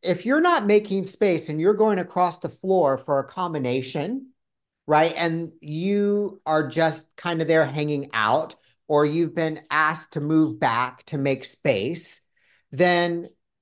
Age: 50-69